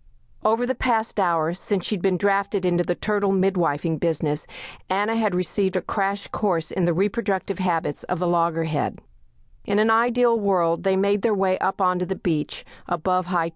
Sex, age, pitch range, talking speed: female, 50-69, 170-205 Hz, 175 wpm